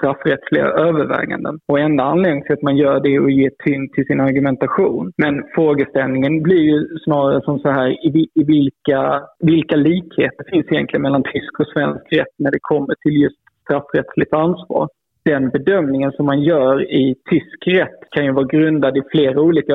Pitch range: 135-160 Hz